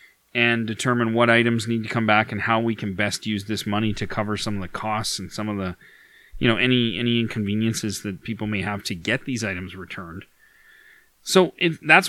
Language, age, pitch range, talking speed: English, 30-49, 110-130 Hz, 215 wpm